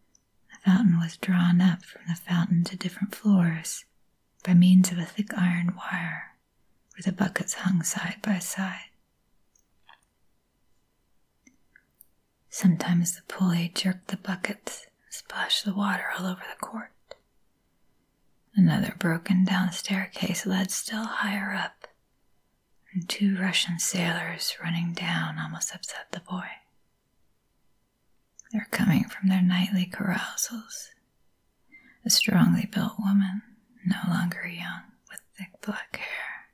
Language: English